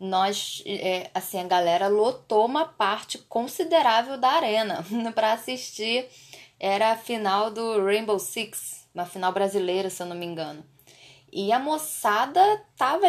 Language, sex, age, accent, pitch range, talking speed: Portuguese, female, 10-29, Brazilian, 205-255 Hz, 140 wpm